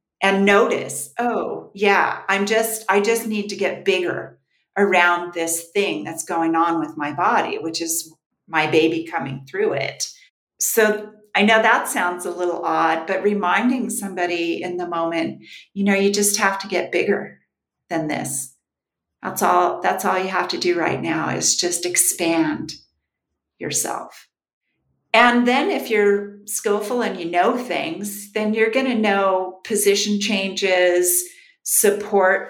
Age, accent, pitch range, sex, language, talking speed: 40-59, American, 170-210 Hz, female, English, 155 wpm